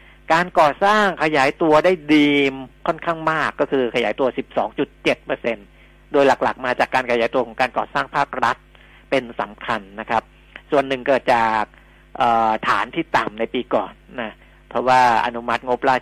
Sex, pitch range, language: male, 115-150 Hz, Thai